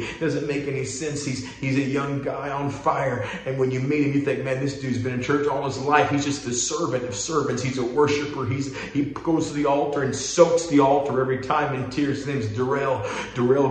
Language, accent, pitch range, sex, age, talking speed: English, American, 130-145 Hz, male, 40-59, 235 wpm